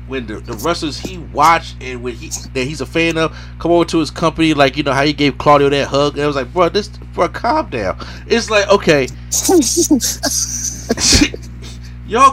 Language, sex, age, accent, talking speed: English, male, 30-49, American, 200 wpm